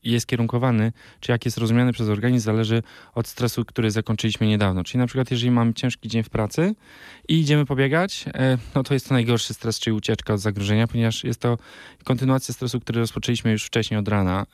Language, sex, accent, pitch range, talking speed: Polish, male, native, 105-125 Hz, 195 wpm